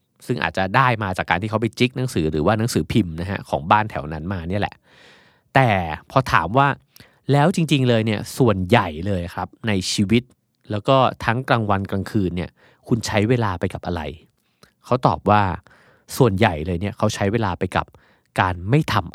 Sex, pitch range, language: male, 95-130 Hz, Thai